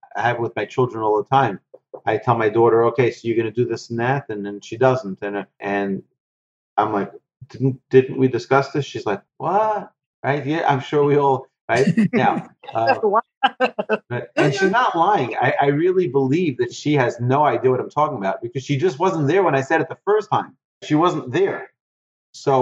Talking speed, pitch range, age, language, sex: 210 wpm, 115-150 Hz, 30-49, English, male